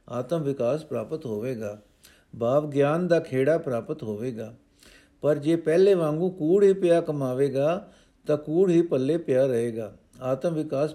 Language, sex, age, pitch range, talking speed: Punjabi, male, 60-79, 120-170 Hz, 130 wpm